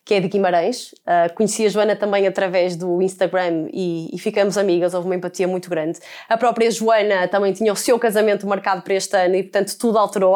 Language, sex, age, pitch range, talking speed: Portuguese, female, 20-39, 190-230 Hz, 215 wpm